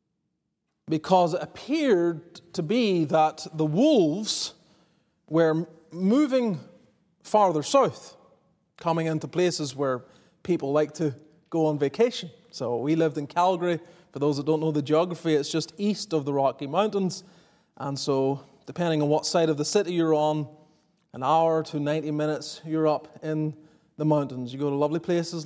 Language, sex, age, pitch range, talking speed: English, male, 30-49, 150-180 Hz, 160 wpm